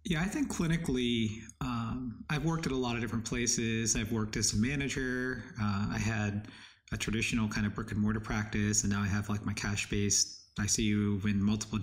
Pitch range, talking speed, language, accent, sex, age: 110-125 Hz, 190 wpm, English, American, male, 30-49